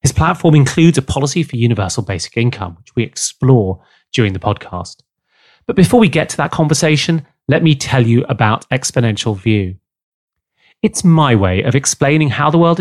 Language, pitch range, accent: English, 115-150 Hz, British